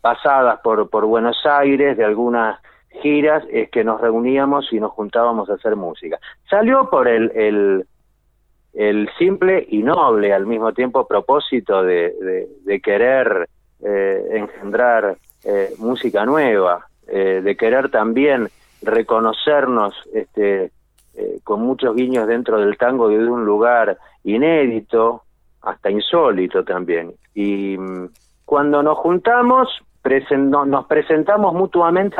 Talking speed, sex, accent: 125 wpm, male, Argentinian